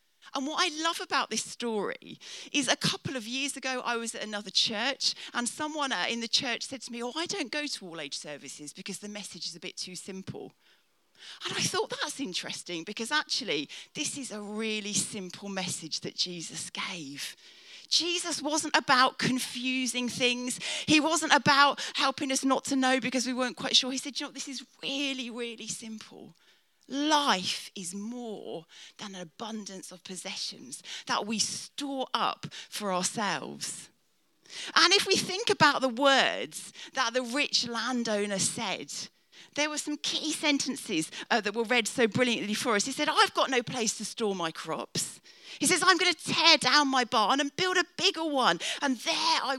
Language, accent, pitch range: English, British, 205-285 Hz